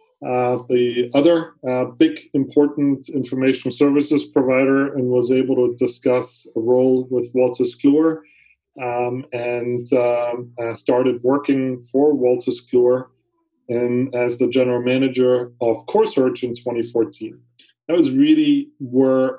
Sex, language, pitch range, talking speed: male, English, 120-135 Hz, 120 wpm